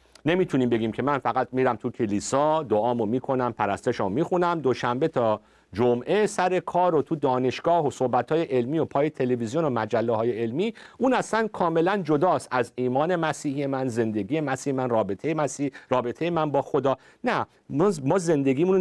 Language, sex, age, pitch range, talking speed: Persian, male, 50-69, 105-155 Hz, 160 wpm